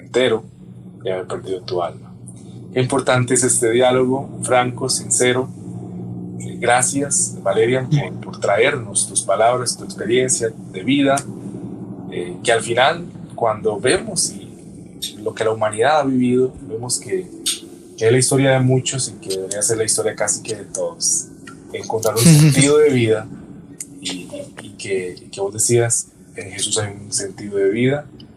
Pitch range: 105-125 Hz